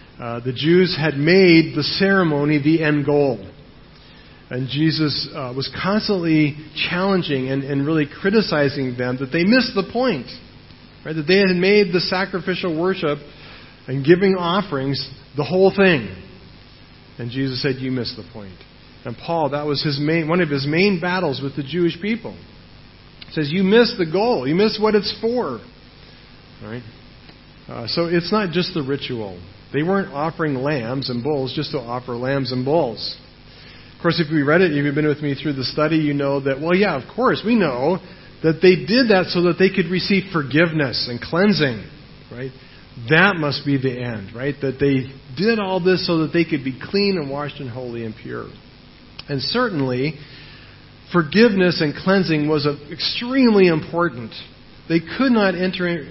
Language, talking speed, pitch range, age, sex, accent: English, 175 wpm, 135-185 Hz, 40-59, male, American